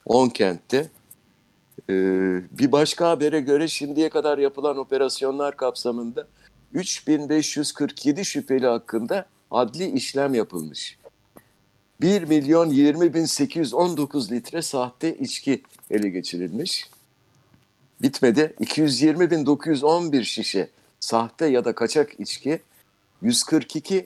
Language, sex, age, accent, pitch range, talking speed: Turkish, male, 60-79, native, 110-150 Hz, 75 wpm